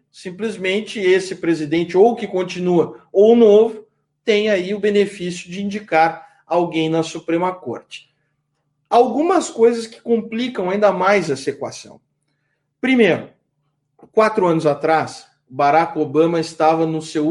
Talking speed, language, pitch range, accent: 120 wpm, Portuguese, 155-210 Hz, Brazilian